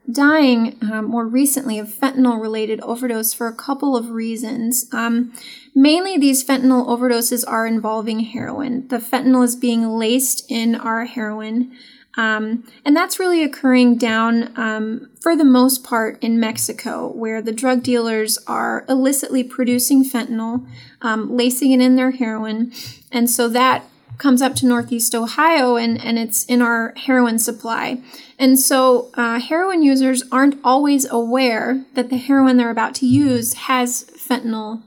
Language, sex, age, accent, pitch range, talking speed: English, female, 20-39, American, 230-265 Hz, 150 wpm